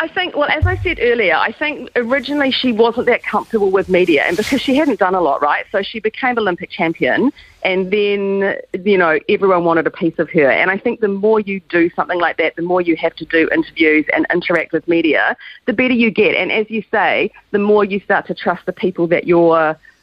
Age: 40-59